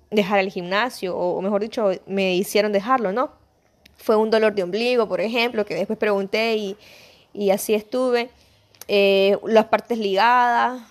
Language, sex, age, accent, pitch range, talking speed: Spanish, female, 20-39, American, 205-245 Hz, 155 wpm